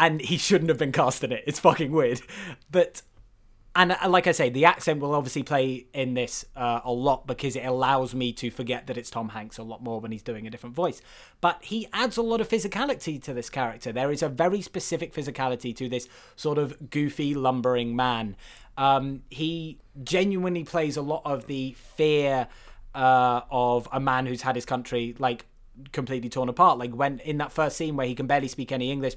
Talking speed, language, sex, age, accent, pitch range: 210 wpm, English, male, 20-39, British, 125-150 Hz